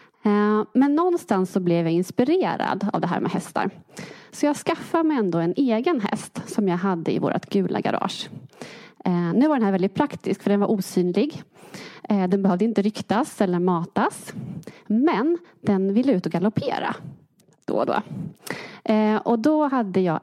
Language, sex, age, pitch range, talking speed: English, female, 30-49, 180-220 Hz, 165 wpm